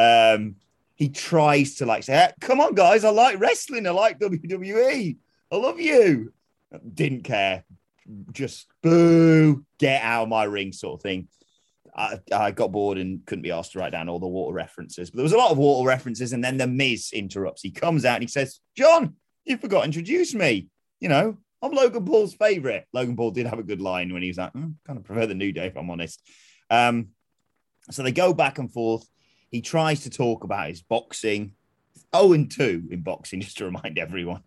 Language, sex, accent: English, male, British